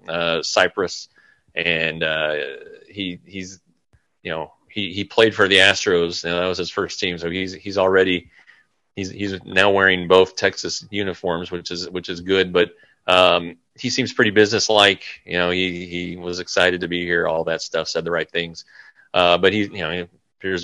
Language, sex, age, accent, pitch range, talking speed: English, male, 30-49, American, 85-100 Hz, 190 wpm